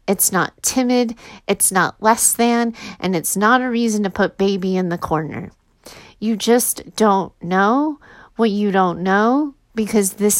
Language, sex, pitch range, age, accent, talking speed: English, female, 180-215 Hz, 30-49, American, 160 wpm